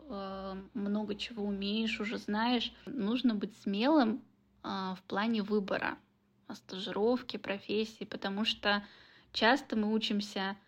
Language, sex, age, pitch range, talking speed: Russian, female, 10-29, 205-245 Hz, 100 wpm